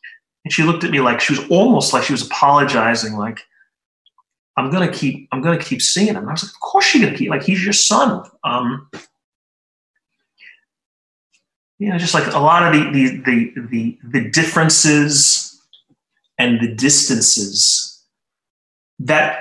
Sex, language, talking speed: male, English, 165 wpm